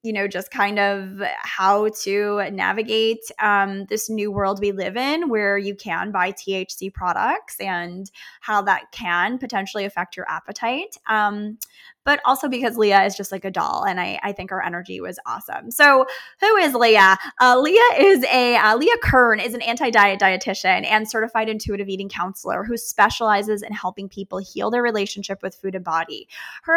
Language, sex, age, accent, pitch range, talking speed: English, female, 20-39, American, 195-240 Hz, 180 wpm